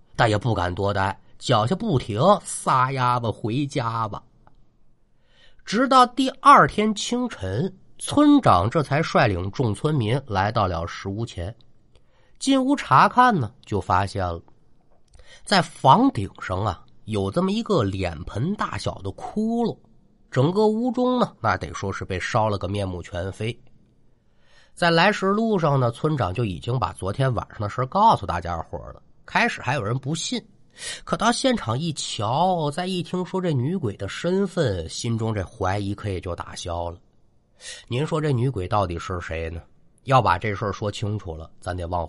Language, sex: Chinese, male